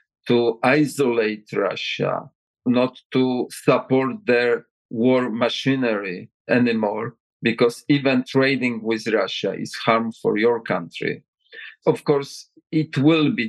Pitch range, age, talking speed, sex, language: 115-135 Hz, 40-59, 110 wpm, male, Ukrainian